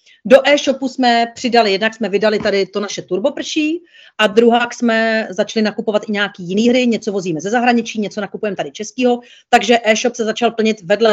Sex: female